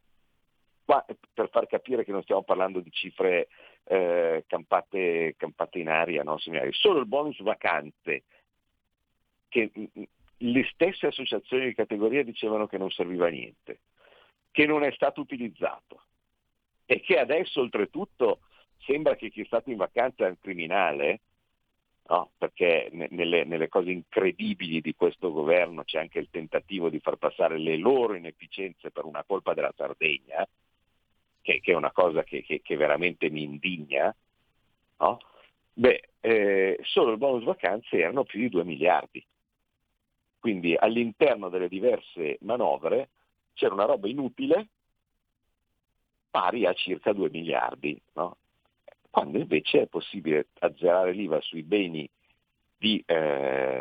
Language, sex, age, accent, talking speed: Italian, male, 50-69, native, 135 wpm